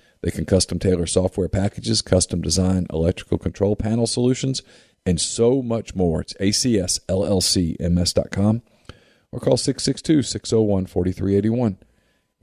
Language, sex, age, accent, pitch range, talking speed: English, male, 40-59, American, 85-110 Hz, 100 wpm